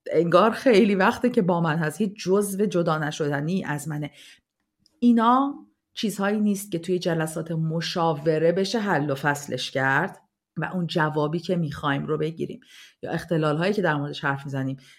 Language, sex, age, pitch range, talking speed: Persian, female, 40-59, 155-225 Hz, 160 wpm